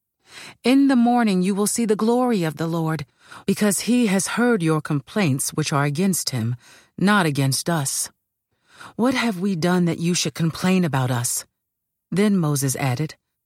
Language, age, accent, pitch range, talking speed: English, 40-59, American, 155-205 Hz, 165 wpm